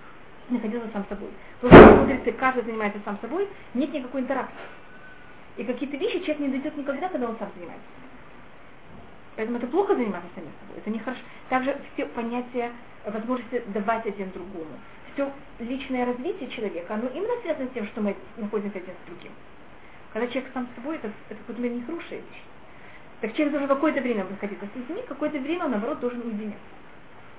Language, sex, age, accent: Russian, female, 30-49, native